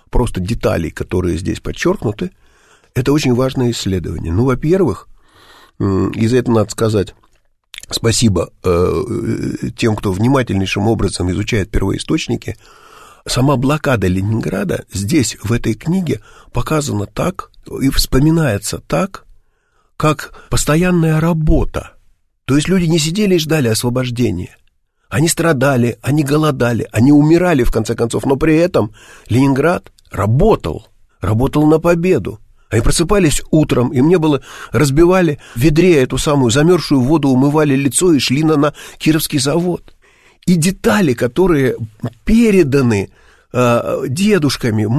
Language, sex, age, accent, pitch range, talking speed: Russian, male, 50-69, native, 115-165 Hz, 125 wpm